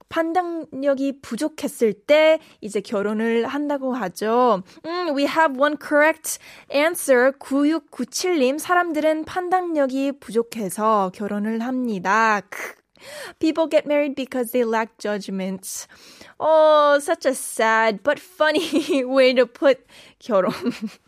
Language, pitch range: Korean, 230-295 Hz